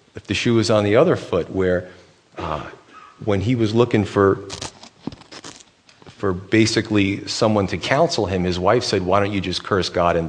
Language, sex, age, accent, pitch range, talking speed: English, male, 40-59, American, 95-115 Hz, 180 wpm